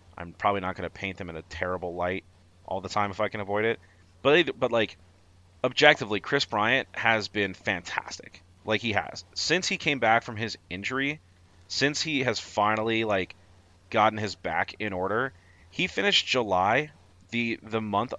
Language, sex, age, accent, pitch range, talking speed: English, male, 30-49, American, 90-115 Hz, 180 wpm